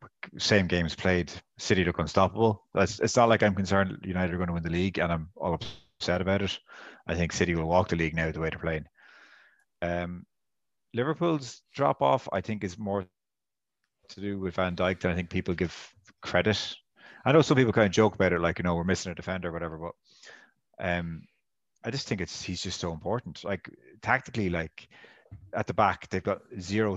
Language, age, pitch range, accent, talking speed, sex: English, 30-49, 85-105 Hz, Irish, 205 wpm, male